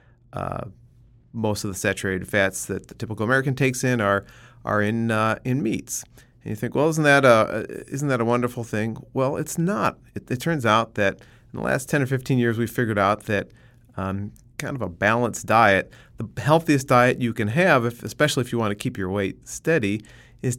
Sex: male